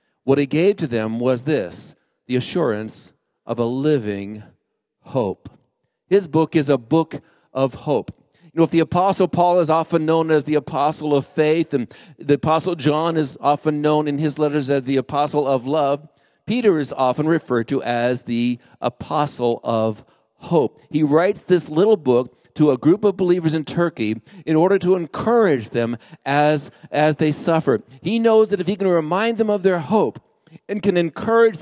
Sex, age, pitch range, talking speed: male, 50-69, 140-185 Hz, 180 wpm